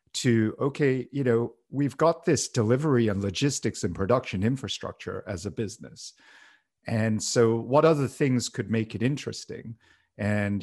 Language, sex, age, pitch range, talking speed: English, male, 50-69, 105-130 Hz, 145 wpm